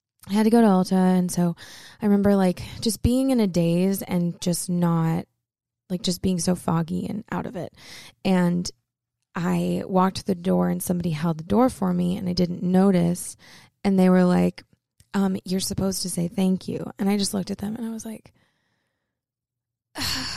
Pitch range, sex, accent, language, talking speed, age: 180-230 Hz, female, American, English, 195 wpm, 20-39